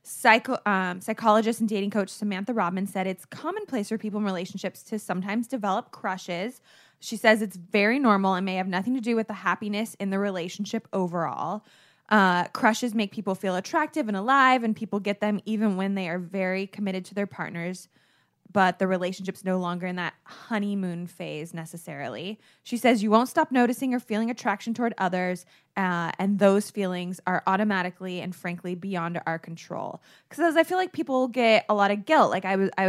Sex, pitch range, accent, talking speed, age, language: female, 180-220 Hz, American, 190 wpm, 20-39, English